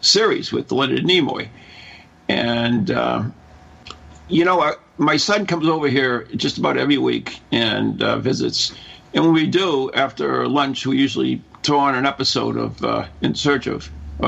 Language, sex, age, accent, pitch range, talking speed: English, male, 60-79, American, 125-155 Hz, 165 wpm